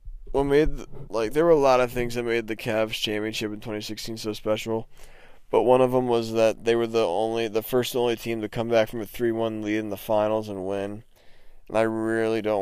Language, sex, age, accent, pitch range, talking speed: English, male, 20-39, American, 105-120 Hz, 230 wpm